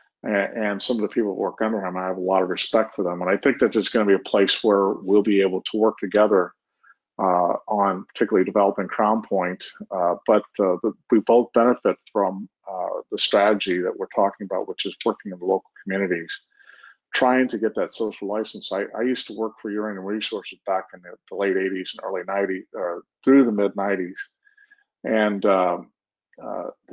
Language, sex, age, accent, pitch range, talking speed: English, male, 50-69, American, 100-120 Hz, 205 wpm